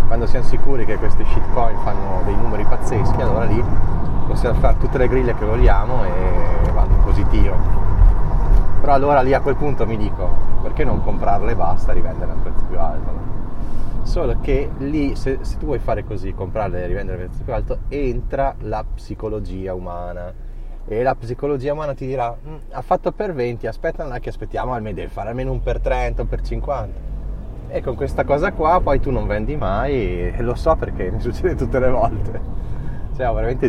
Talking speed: 190 wpm